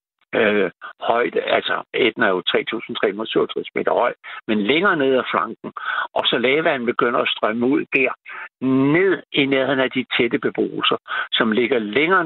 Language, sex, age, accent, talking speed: Danish, male, 60-79, native, 155 wpm